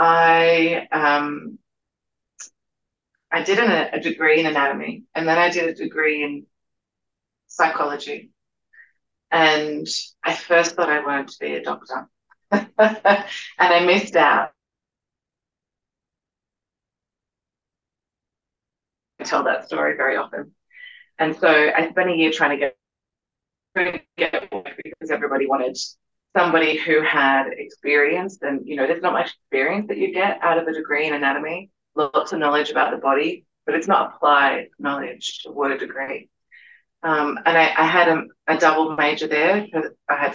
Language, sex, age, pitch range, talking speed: English, female, 30-49, 145-180 Hz, 145 wpm